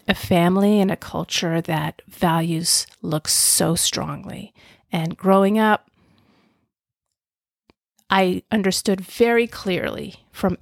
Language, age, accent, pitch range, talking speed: English, 40-59, American, 175-210 Hz, 100 wpm